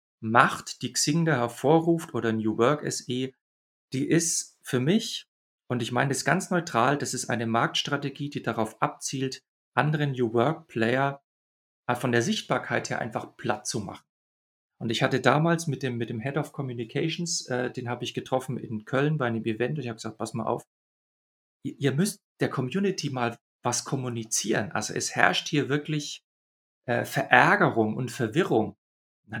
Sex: male